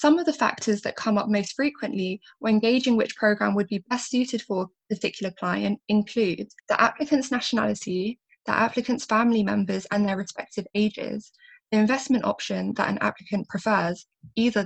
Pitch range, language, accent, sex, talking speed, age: 195-240 Hz, English, British, female, 170 wpm, 10-29